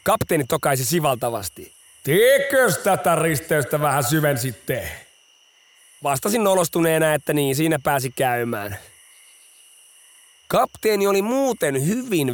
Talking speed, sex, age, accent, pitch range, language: 95 wpm, male, 30-49, native, 135-170 Hz, Finnish